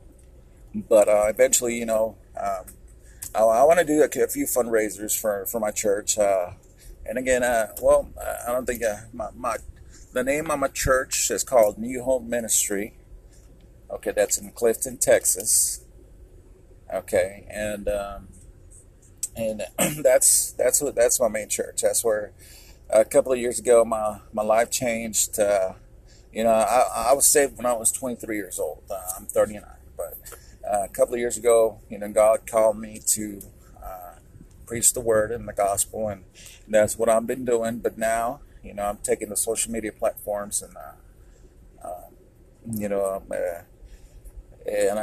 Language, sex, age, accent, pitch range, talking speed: English, male, 40-59, American, 100-125 Hz, 170 wpm